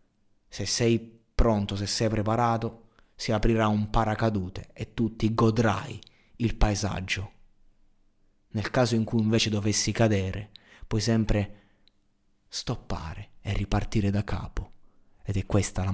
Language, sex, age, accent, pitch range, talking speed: Italian, male, 20-39, native, 100-115 Hz, 130 wpm